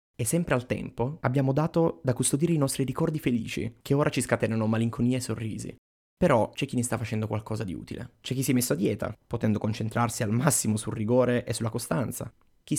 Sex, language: male, Italian